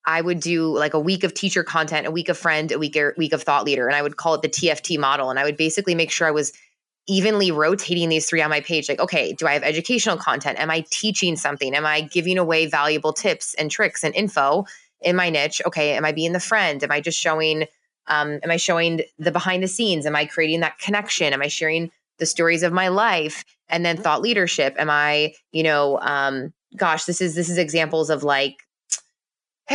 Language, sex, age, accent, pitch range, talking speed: English, female, 20-39, American, 155-180 Hz, 235 wpm